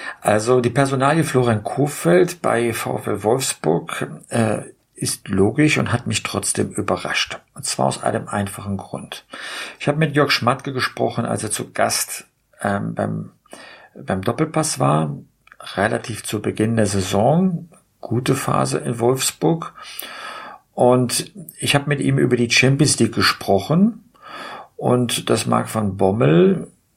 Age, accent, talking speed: 50-69, German, 135 wpm